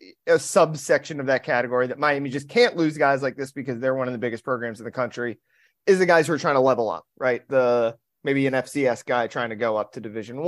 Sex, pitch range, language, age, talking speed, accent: male, 120-165 Hz, English, 30-49, 250 wpm, American